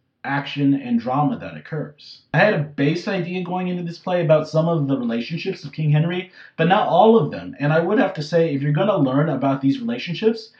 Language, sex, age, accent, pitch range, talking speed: English, male, 30-49, American, 140-185 Hz, 230 wpm